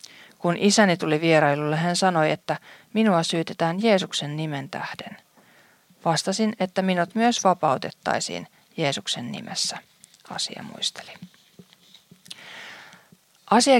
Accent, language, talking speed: native, Finnish, 95 wpm